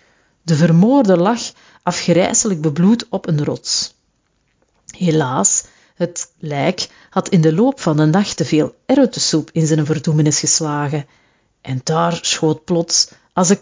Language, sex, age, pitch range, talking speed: Dutch, female, 40-59, 160-195 Hz, 135 wpm